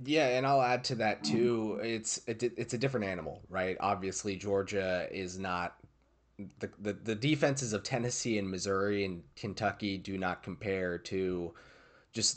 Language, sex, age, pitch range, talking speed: English, male, 30-49, 95-115 Hz, 165 wpm